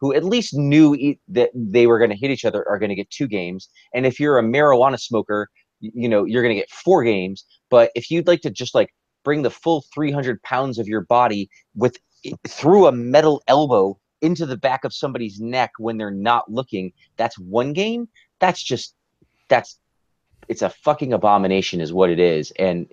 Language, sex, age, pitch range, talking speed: English, male, 30-49, 95-130 Hz, 200 wpm